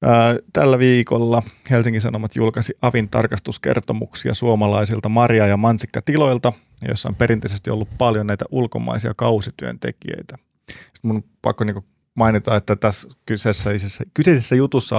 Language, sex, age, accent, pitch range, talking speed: Finnish, male, 30-49, native, 105-125 Hz, 115 wpm